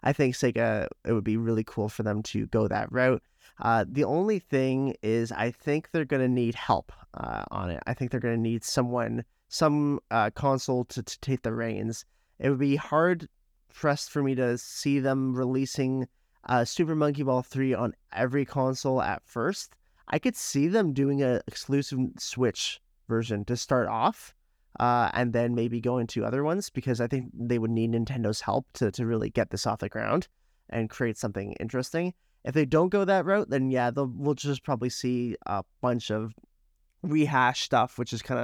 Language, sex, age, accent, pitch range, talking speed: English, male, 30-49, American, 120-140 Hz, 195 wpm